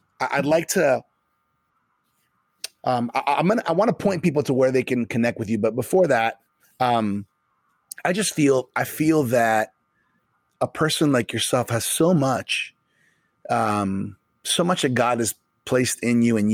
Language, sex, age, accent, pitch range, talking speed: English, male, 30-49, American, 115-145 Hz, 165 wpm